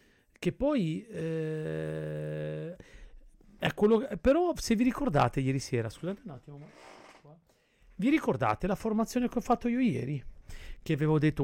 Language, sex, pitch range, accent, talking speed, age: Italian, male, 140-195 Hz, native, 145 wpm, 40-59